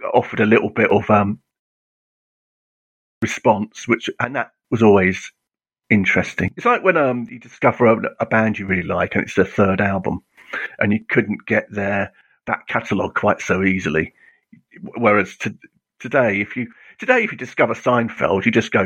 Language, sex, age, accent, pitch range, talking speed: English, male, 50-69, British, 100-120 Hz, 170 wpm